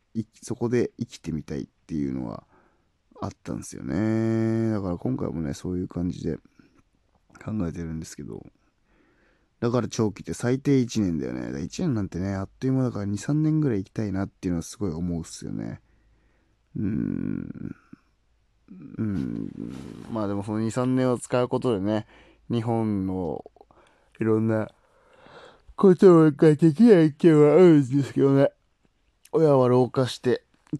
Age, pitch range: 20-39, 90-120 Hz